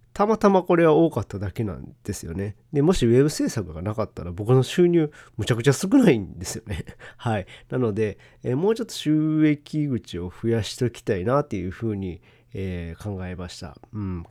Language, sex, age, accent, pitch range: Japanese, male, 40-59, native, 100-140 Hz